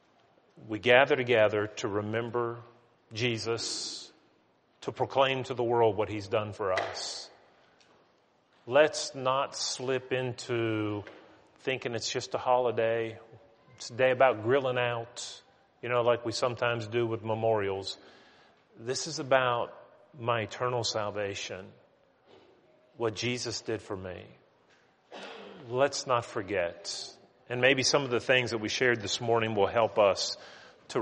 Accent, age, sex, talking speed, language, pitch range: American, 40-59, male, 130 wpm, English, 115-130 Hz